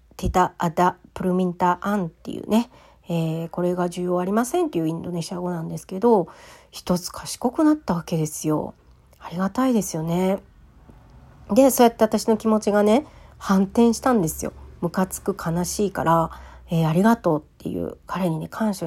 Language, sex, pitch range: Japanese, female, 165-230 Hz